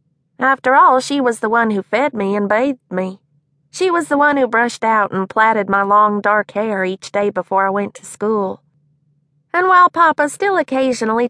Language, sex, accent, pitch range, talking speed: English, female, American, 190-255 Hz, 195 wpm